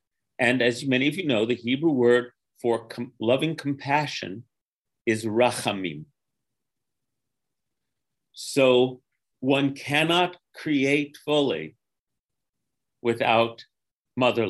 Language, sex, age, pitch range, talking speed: English, male, 40-59, 115-140 Hz, 85 wpm